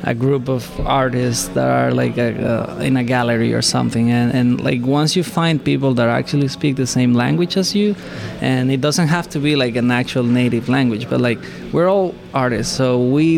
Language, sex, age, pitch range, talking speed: English, male, 20-39, 115-140 Hz, 205 wpm